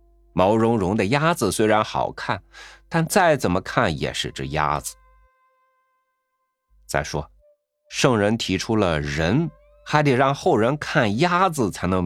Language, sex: Chinese, male